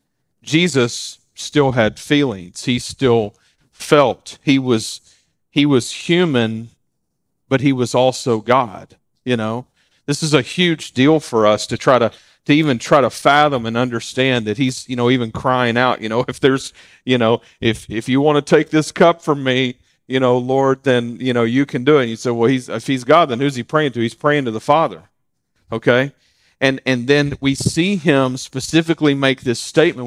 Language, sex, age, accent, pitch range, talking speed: English, male, 40-59, American, 125-150 Hz, 195 wpm